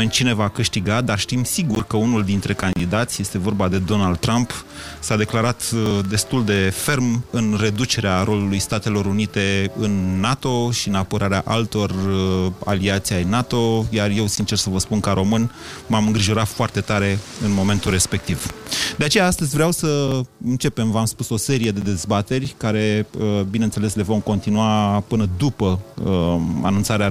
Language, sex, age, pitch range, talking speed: Romanian, male, 30-49, 100-120 Hz, 155 wpm